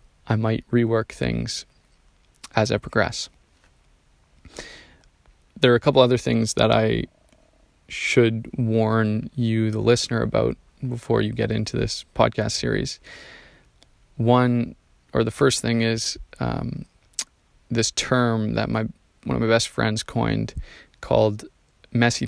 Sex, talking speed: male, 125 wpm